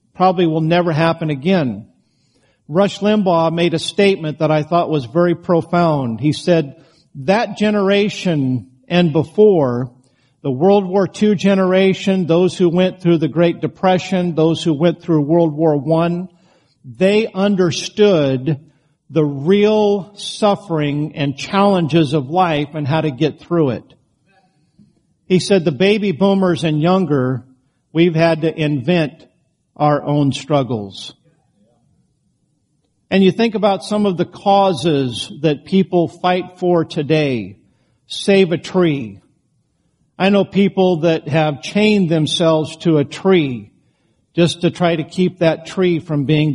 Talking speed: 135 wpm